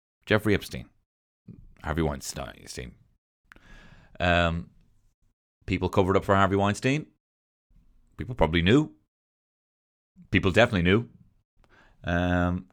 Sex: male